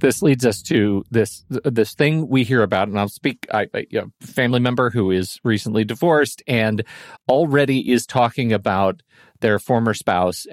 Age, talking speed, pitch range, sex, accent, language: 40-59, 185 wpm, 110-140 Hz, male, American, English